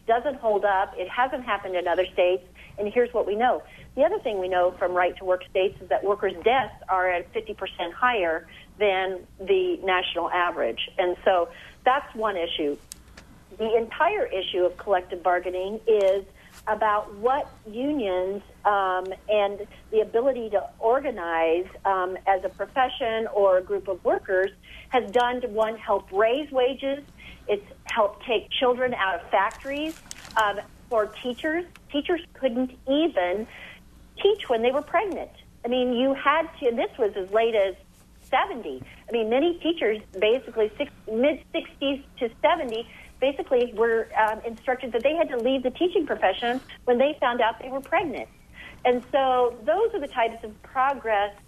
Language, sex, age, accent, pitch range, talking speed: English, female, 40-59, American, 190-255 Hz, 165 wpm